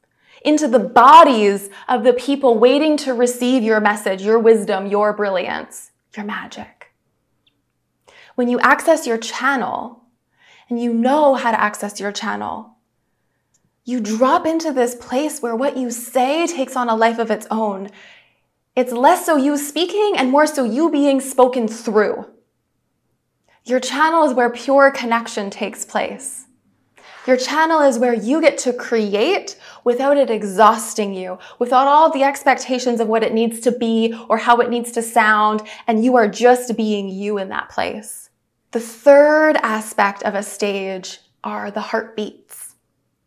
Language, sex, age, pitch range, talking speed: English, female, 20-39, 220-265 Hz, 155 wpm